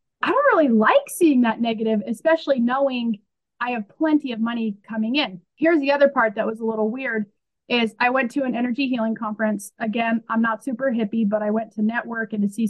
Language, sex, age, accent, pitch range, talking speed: English, female, 30-49, American, 220-270 Hz, 215 wpm